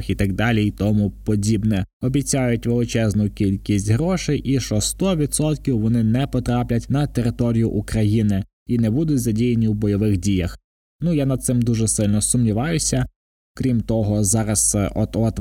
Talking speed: 145 wpm